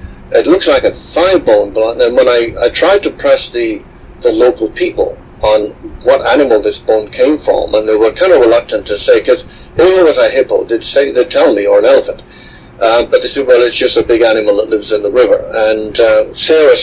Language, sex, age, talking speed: English, male, 60-79, 230 wpm